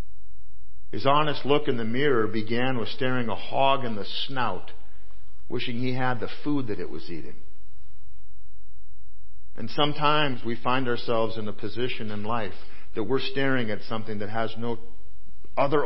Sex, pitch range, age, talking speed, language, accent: male, 95-130 Hz, 50-69, 160 wpm, English, American